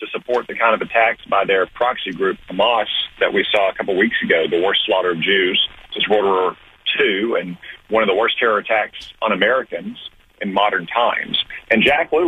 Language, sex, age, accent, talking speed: English, male, 40-59, American, 205 wpm